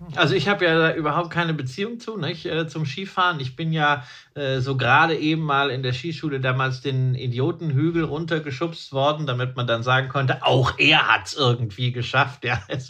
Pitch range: 125-155 Hz